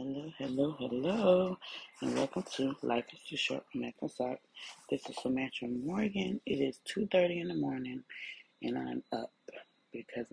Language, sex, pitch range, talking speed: English, female, 115-150 Hz, 155 wpm